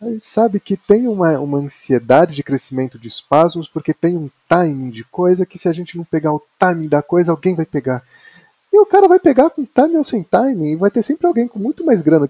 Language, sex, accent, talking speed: Portuguese, male, Brazilian, 245 wpm